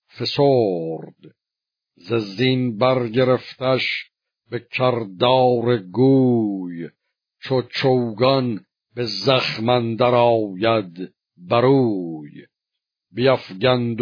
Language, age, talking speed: Persian, 60-79, 50 wpm